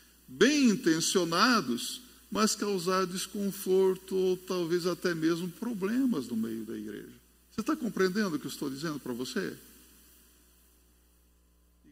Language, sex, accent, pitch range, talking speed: Portuguese, male, Brazilian, 175-250 Hz, 125 wpm